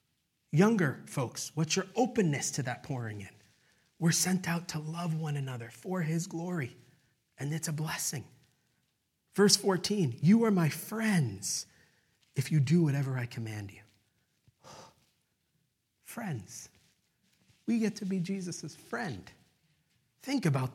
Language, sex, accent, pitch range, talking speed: English, male, American, 140-190 Hz, 130 wpm